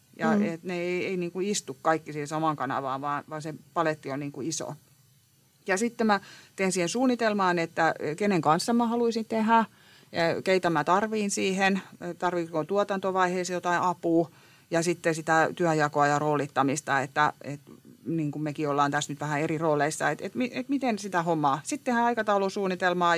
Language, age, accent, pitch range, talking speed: Finnish, 30-49, native, 150-190 Hz, 170 wpm